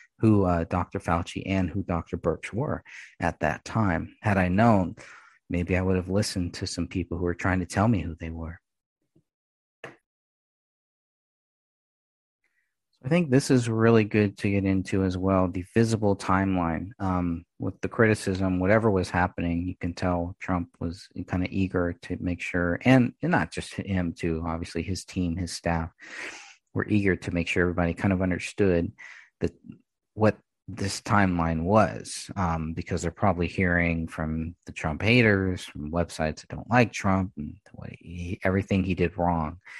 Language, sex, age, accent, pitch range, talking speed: English, male, 40-59, American, 85-100 Hz, 170 wpm